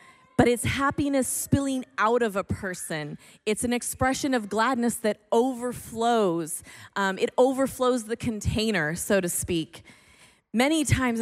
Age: 30-49